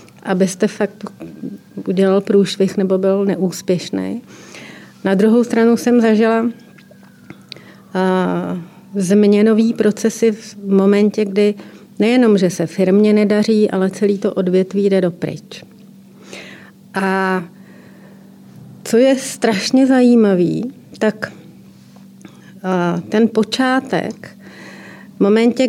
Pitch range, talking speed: 190-220 Hz, 90 wpm